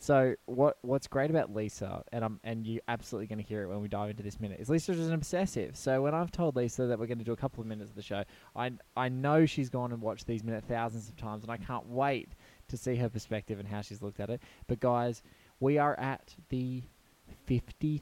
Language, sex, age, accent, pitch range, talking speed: English, male, 20-39, Australian, 110-135 Hz, 275 wpm